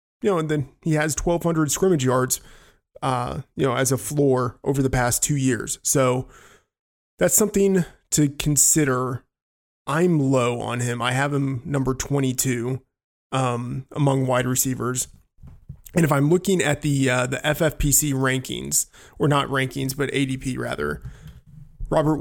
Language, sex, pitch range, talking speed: English, male, 130-150 Hz, 150 wpm